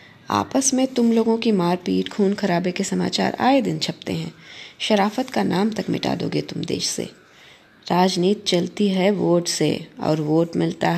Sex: female